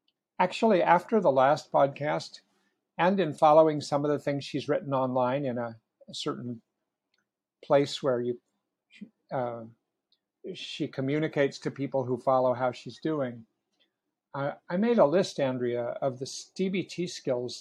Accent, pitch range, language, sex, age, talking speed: American, 135-180 Hz, English, male, 60-79, 145 wpm